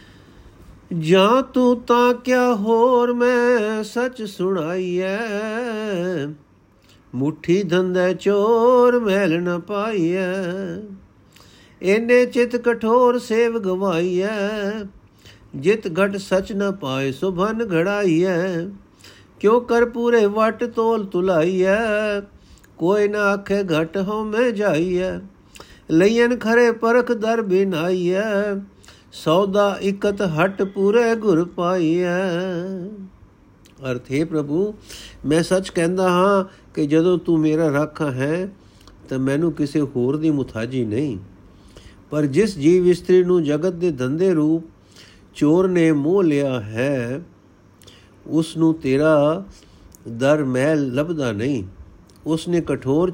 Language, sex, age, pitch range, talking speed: Punjabi, male, 50-69, 135-205 Hz, 115 wpm